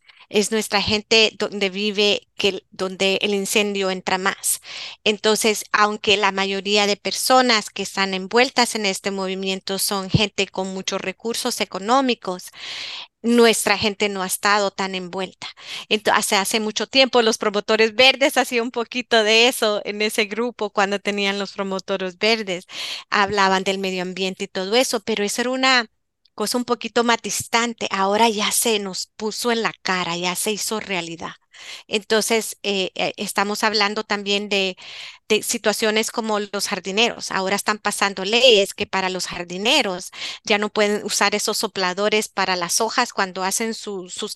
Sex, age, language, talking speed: female, 30-49, Spanish, 160 wpm